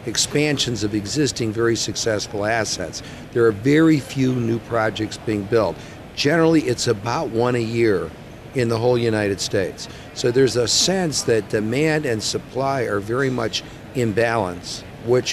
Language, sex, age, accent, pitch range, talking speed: English, male, 50-69, American, 110-140 Hz, 155 wpm